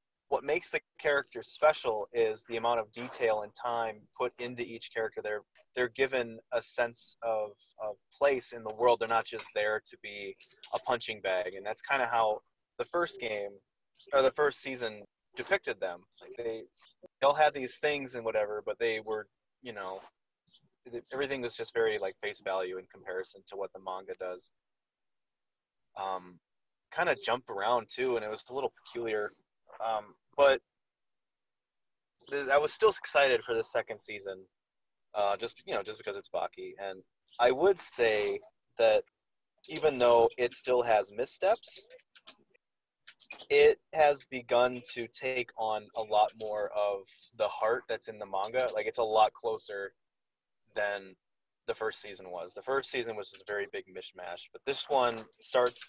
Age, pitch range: 20-39, 105-155 Hz